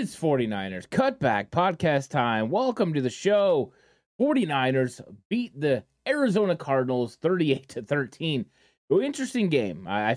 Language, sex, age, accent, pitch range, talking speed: English, male, 20-39, American, 125-160 Hz, 110 wpm